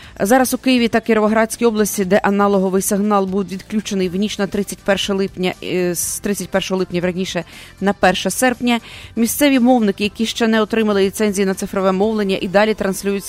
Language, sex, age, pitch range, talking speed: English, female, 30-49, 185-215 Hz, 150 wpm